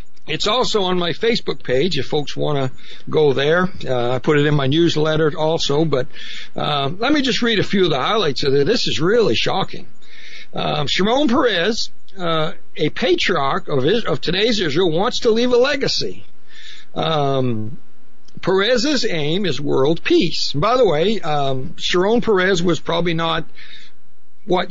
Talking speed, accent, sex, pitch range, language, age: 170 wpm, American, male, 150-185 Hz, English, 60-79